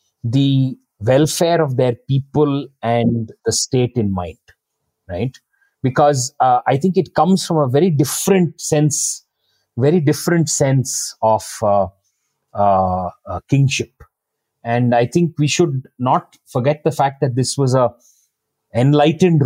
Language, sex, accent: Hindi, male, native